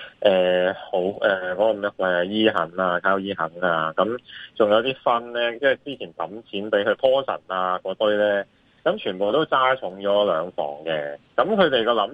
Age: 20-39